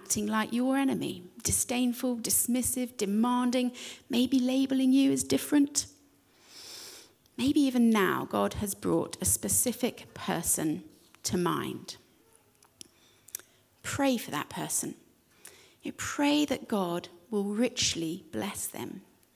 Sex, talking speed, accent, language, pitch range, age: female, 100 wpm, British, English, 205-265 Hz, 40-59